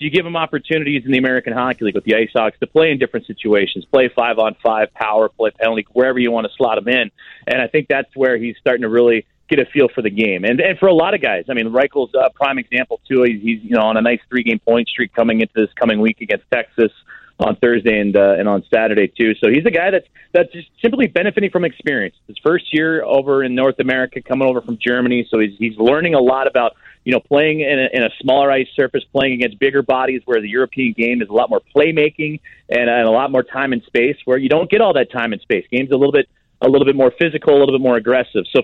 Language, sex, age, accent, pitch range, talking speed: English, male, 30-49, American, 120-150 Hz, 260 wpm